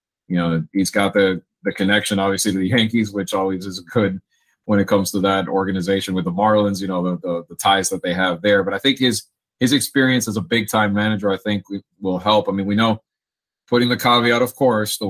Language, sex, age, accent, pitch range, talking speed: English, male, 30-49, American, 95-115 Hz, 240 wpm